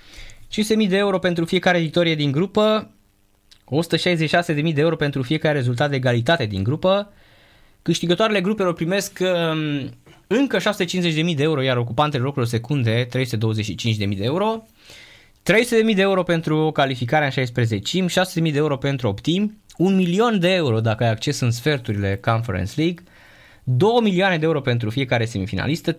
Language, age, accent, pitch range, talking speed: Romanian, 20-39, native, 115-170 Hz, 145 wpm